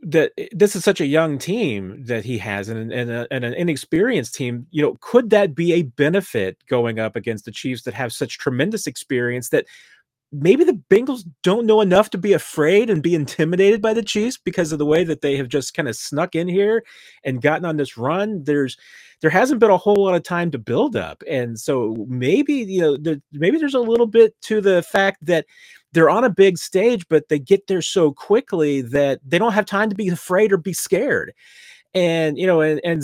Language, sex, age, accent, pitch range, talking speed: English, male, 30-49, American, 115-185 Hz, 220 wpm